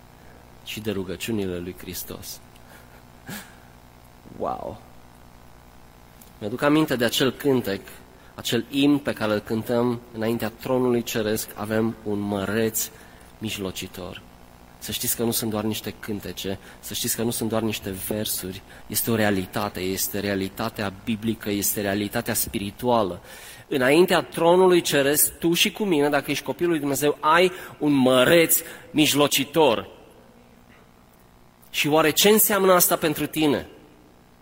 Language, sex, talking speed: Romanian, male, 125 wpm